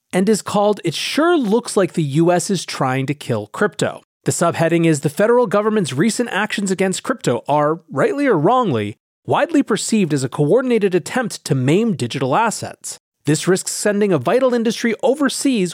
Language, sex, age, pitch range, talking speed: English, male, 30-49, 140-215 Hz, 170 wpm